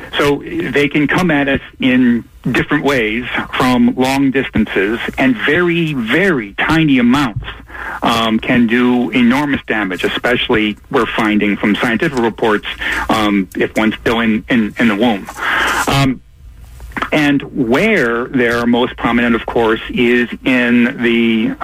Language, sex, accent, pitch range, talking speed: English, male, American, 115-140 Hz, 135 wpm